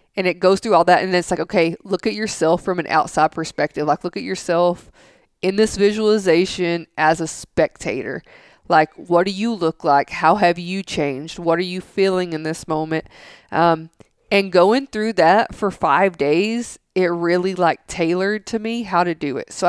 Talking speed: 190 wpm